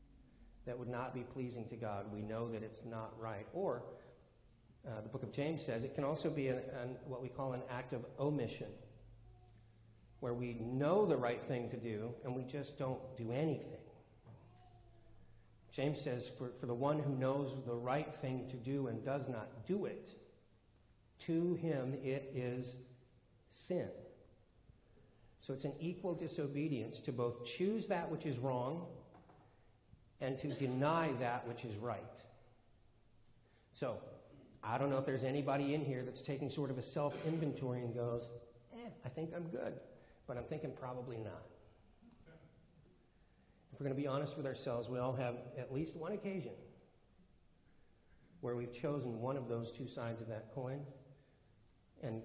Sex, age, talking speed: male, 50-69, 165 wpm